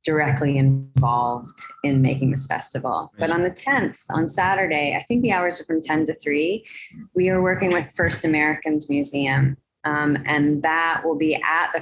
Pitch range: 145-165 Hz